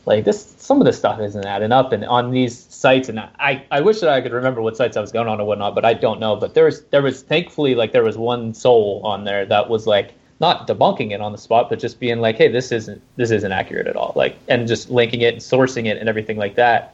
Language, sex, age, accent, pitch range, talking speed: English, male, 20-39, American, 110-130 Hz, 280 wpm